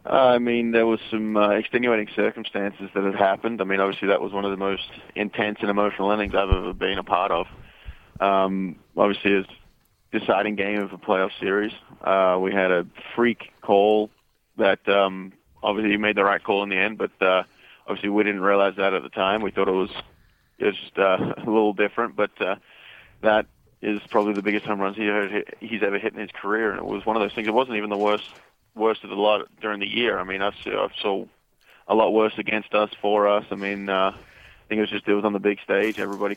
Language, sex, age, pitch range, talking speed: English, male, 20-39, 100-110 Hz, 225 wpm